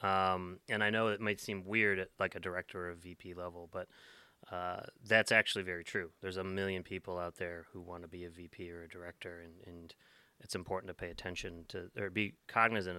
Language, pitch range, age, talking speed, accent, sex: English, 90-110 Hz, 30-49, 220 wpm, American, male